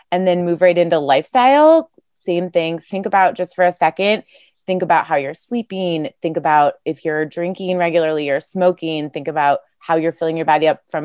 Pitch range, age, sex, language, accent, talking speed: 155-180 Hz, 20-39, female, English, American, 195 wpm